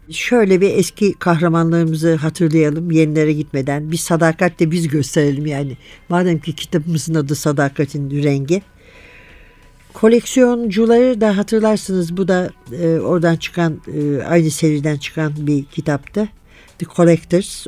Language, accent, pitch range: Turkish, native, 155-195 Hz